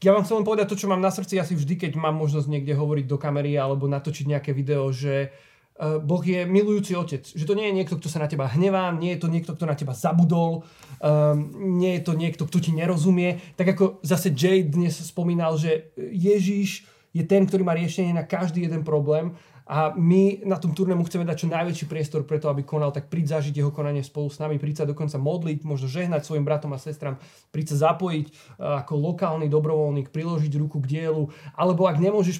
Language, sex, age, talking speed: Slovak, male, 20-39, 210 wpm